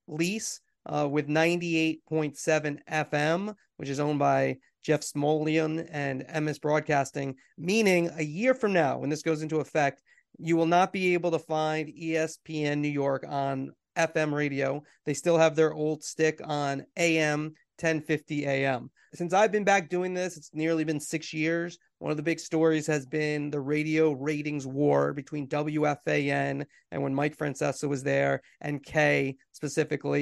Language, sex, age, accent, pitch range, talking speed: English, male, 30-49, American, 145-170 Hz, 160 wpm